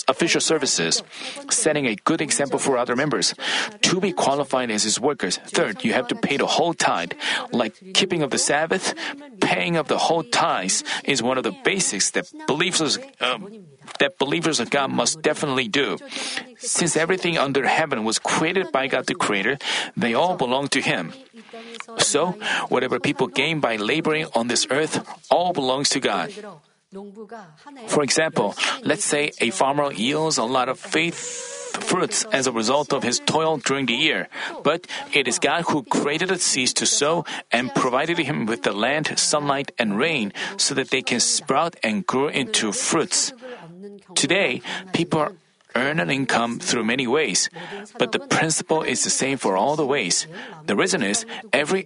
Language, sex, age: Korean, male, 40-59